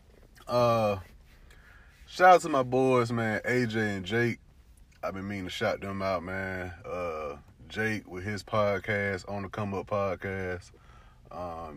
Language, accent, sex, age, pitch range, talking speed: English, American, male, 30-49, 85-100 Hz, 150 wpm